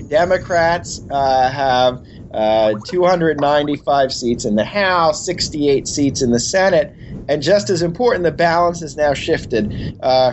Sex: male